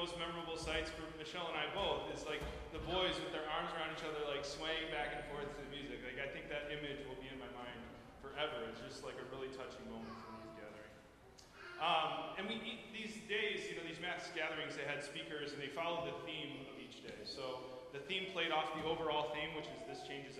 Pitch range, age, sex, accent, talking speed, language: 140-170 Hz, 20-39, male, American, 235 wpm, English